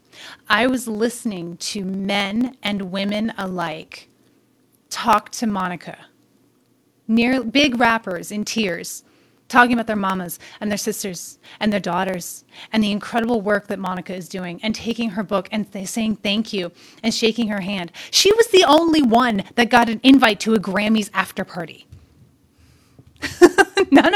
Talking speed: 150 wpm